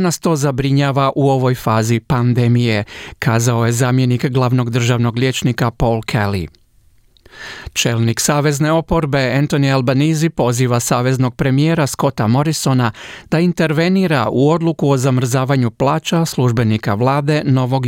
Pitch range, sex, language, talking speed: 125-155 Hz, male, Croatian, 120 wpm